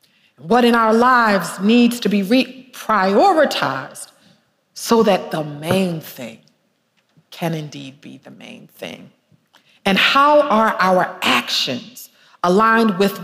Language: English